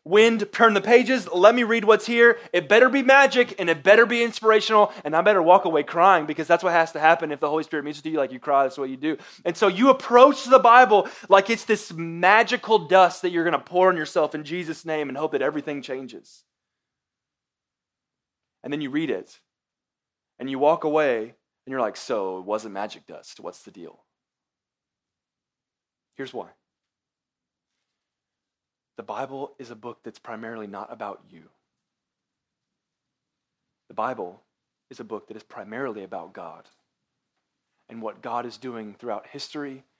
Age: 20-39